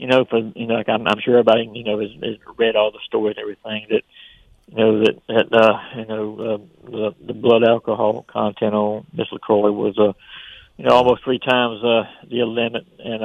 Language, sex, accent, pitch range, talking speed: English, male, American, 105-115 Hz, 220 wpm